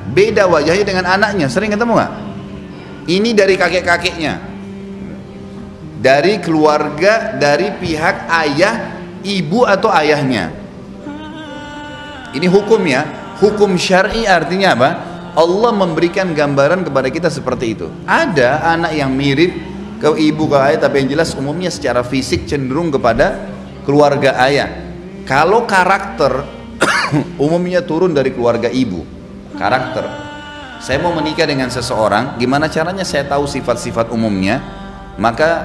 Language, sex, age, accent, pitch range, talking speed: Indonesian, male, 30-49, native, 135-185 Hz, 120 wpm